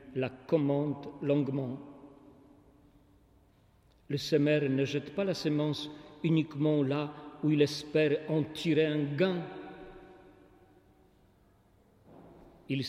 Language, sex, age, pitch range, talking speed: French, male, 50-69, 130-150 Hz, 95 wpm